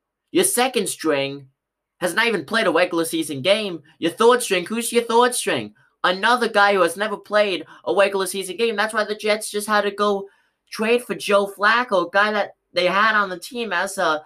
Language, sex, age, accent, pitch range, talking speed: English, male, 20-39, American, 140-205 Hz, 210 wpm